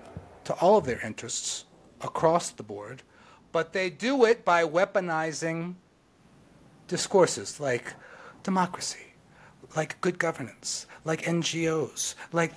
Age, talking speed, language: 40-59, 110 wpm, English